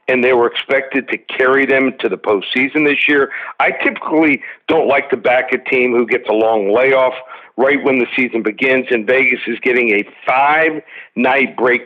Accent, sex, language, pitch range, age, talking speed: American, male, English, 120-135 Hz, 50-69, 185 wpm